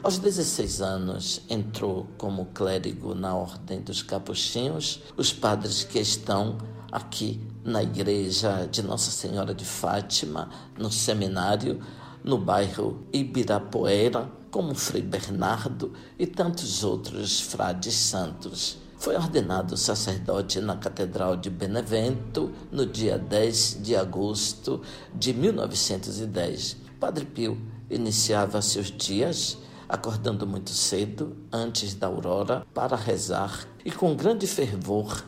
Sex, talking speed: male, 110 wpm